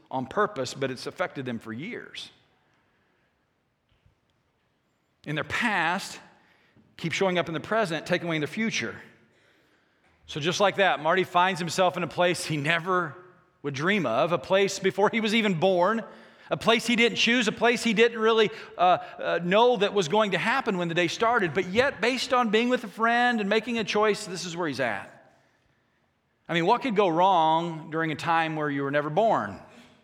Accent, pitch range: American, 165-215 Hz